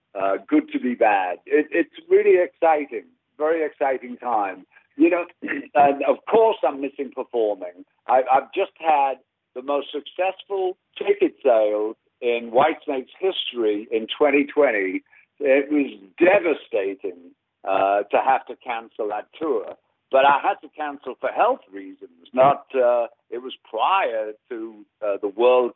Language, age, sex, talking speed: English, 60-79, male, 135 wpm